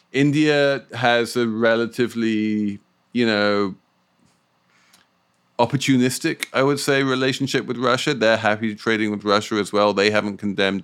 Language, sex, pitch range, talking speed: English, male, 80-120 Hz, 125 wpm